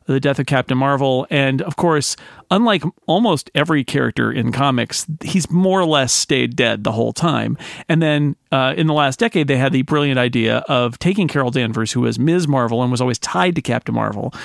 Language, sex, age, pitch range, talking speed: English, male, 40-59, 130-165 Hz, 210 wpm